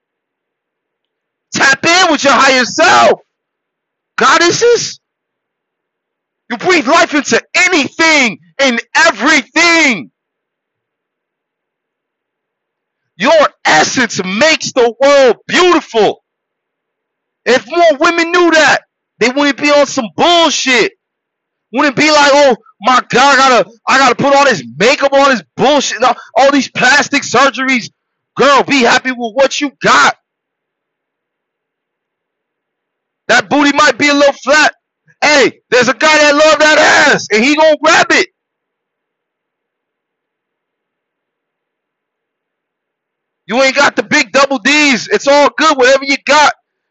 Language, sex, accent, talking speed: English, male, American, 120 wpm